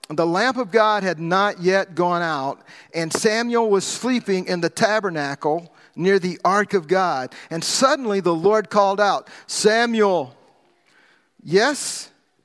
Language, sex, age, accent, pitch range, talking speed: English, male, 50-69, American, 180-245 Hz, 140 wpm